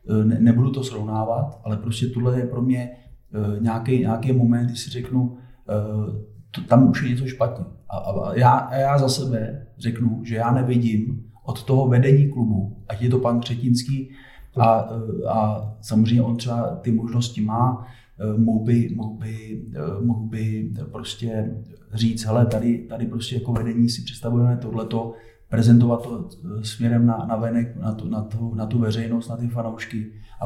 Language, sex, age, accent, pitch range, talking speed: Czech, male, 30-49, native, 110-125 Hz, 170 wpm